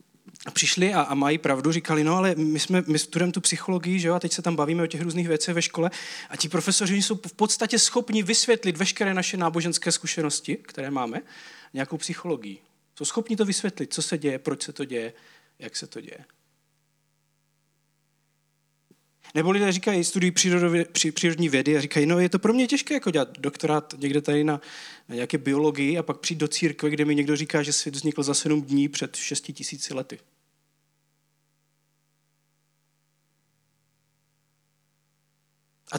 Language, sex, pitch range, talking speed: Czech, male, 150-180 Hz, 170 wpm